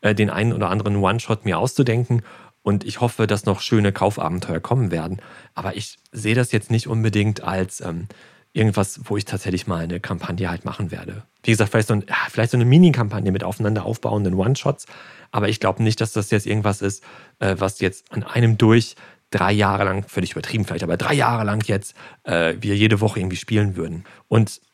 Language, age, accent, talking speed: German, 40-59, German, 200 wpm